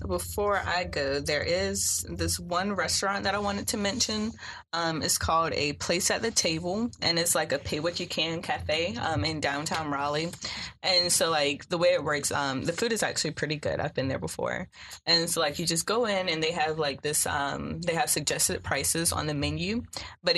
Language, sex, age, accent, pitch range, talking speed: English, female, 20-39, American, 140-180 Hz, 205 wpm